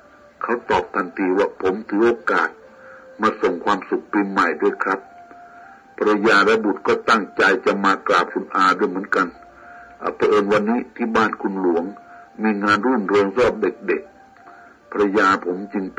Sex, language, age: male, Thai, 60-79